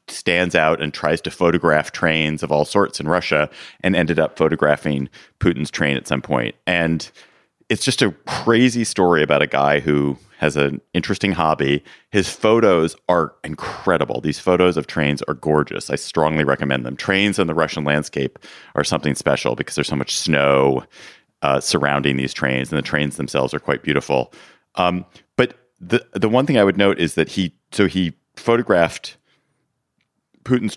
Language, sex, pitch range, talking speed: English, male, 75-100 Hz, 175 wpm